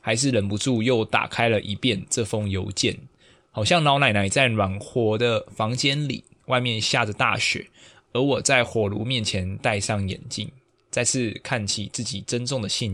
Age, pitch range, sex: 20-39, 105-135 Hz, male